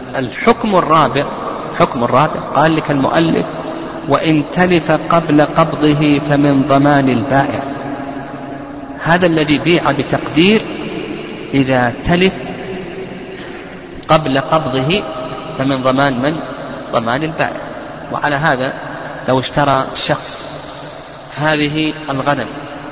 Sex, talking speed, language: male, 90 wpm, Arabic